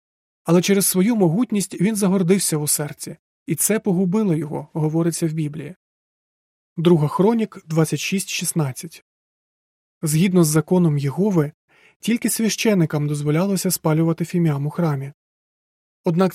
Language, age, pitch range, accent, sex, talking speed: Ukrainian, 30-49, 160-195 Hz, native, male, 110 wpm